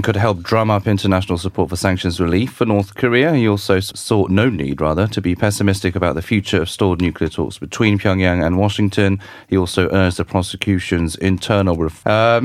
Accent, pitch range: British, 95-120 Hz